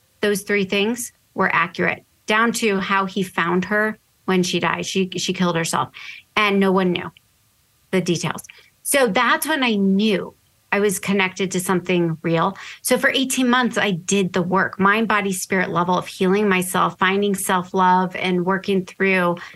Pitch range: 185-225 Hz